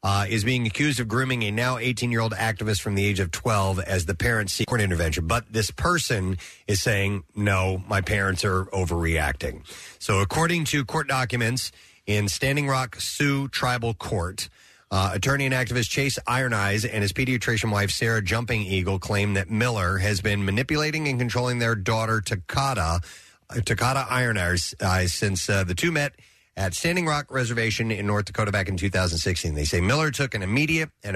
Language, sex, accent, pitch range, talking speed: English, male, American, 95-125 Hz, 180 wpm